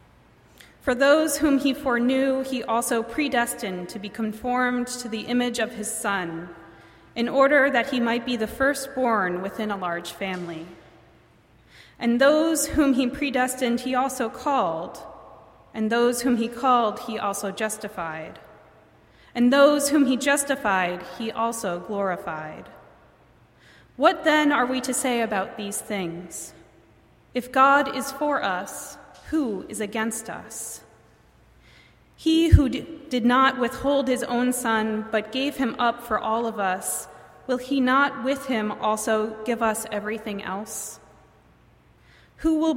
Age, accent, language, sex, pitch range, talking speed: 20-39, American, English, female, 210-265 Hz, 140 wpm